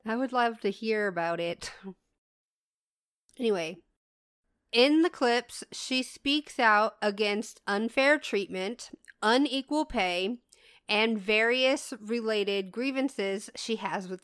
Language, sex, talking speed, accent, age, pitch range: English, female, 110 wpm, American, 30-49, 200-270 Hz